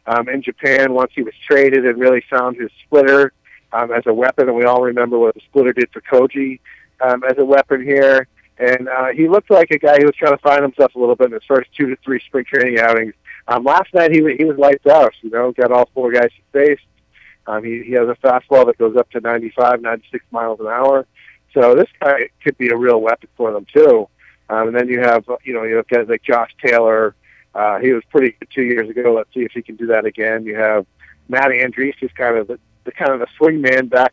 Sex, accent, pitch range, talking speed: male, American, 115-140 Hz, 250 wpm